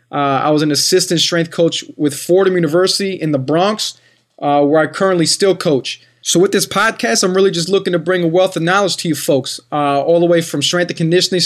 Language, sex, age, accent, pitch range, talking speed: English, male, 20-39, American, 150-185 Hz, 230 wpm